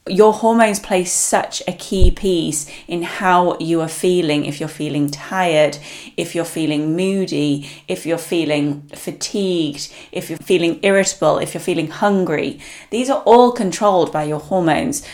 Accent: British